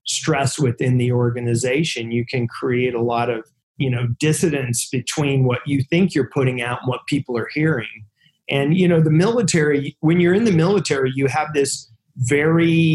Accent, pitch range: American, 125-150 Hz